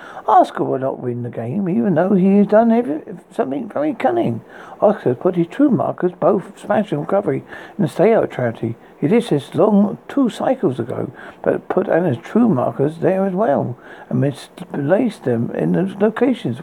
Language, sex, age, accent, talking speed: English, male, 60-79, British, 175 wpm